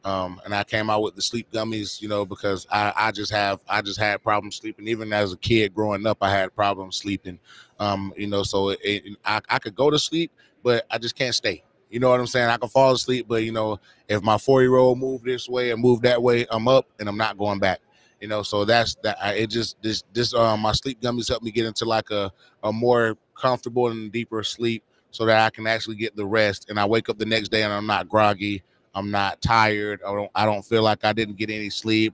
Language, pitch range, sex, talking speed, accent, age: English, 100-115 Hz, male, 250 wpm, American, 20-39